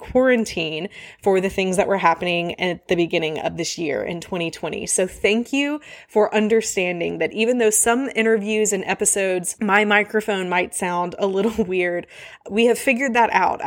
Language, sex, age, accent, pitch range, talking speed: English, female, 20-39, American, 185-230 Hz, 170 wpm